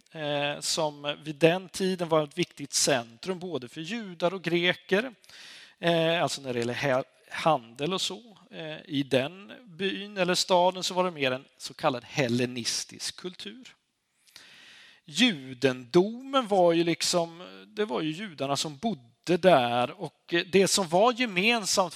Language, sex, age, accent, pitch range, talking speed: Swedish, male, 40-59, native, 140-195 Hz, 135 wpm